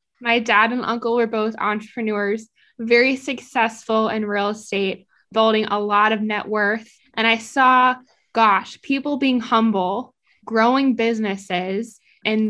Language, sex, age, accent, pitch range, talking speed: English, female, 10-29, American, 205-240 Hz, 135 wpm